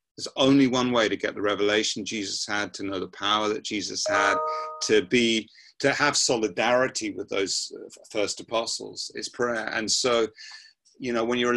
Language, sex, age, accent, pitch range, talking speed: English, male, 30-49, British, 95-110 Hz, 175 wpm